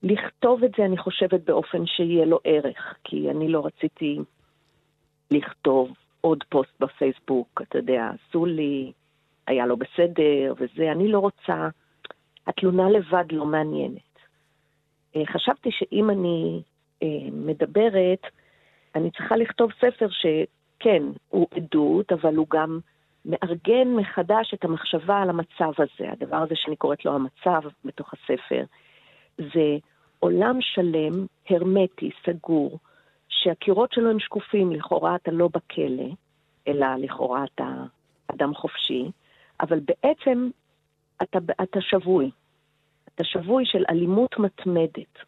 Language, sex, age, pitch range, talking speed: Hebrew, female, 40-59, 150-190 Hz, 120 wpm